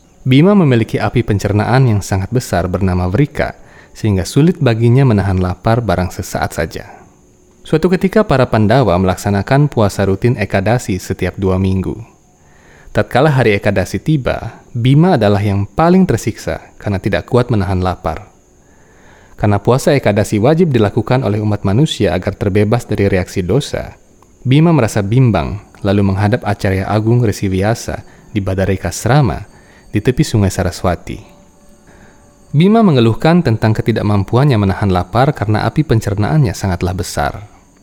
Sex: male